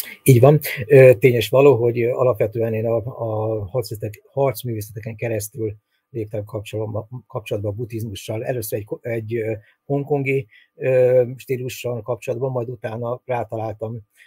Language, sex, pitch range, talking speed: Hungarian, male, 105-120 Hz, 100 wpm